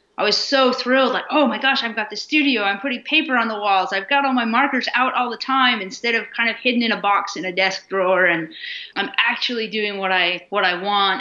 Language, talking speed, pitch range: English, 255 wpm, 180-230 Hz